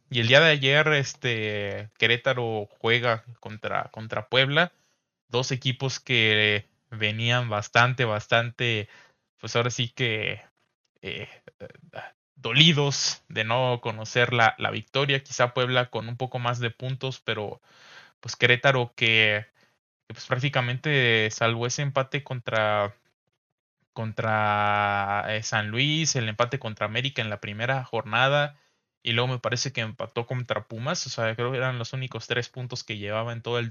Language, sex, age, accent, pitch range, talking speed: Spanish, male, 20-39, Mexican, 110-130 Hz, 140 wpm